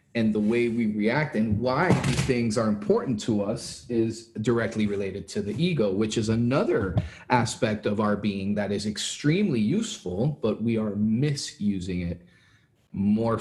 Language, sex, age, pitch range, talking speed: English, male, 30-49, 100-125 Hz, 160 wpm